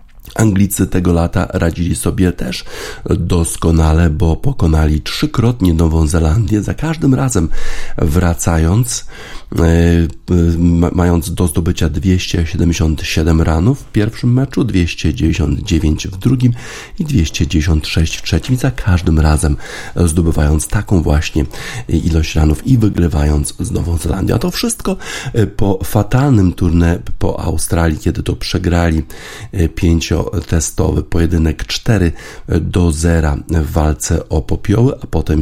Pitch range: 80-100 Hz